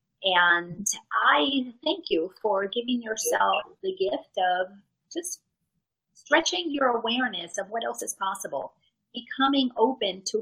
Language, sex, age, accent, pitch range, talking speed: English, female, 40-59, American, 185-255 Hz, 125 wpm